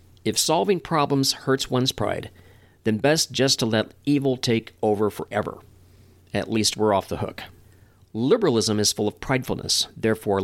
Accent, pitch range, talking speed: American, 100-130 Hz, 155 wpm